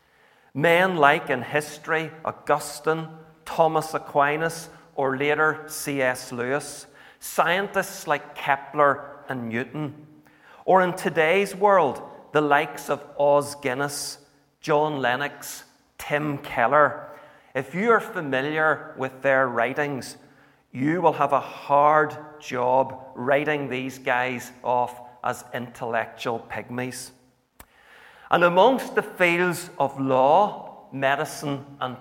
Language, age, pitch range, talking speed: English, 40-59, 130-160 Hz, 105 wpm